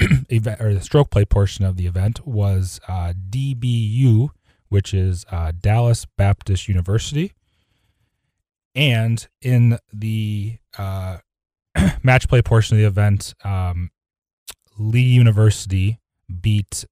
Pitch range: 90-115 Hz